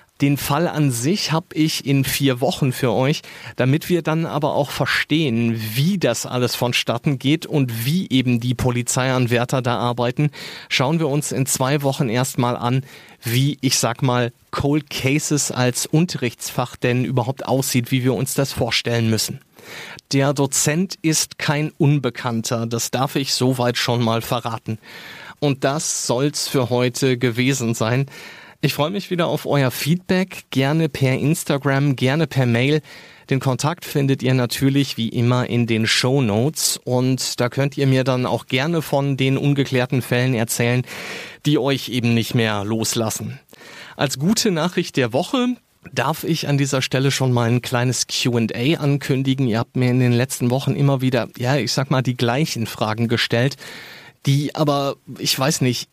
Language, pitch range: German, 125-145 Hz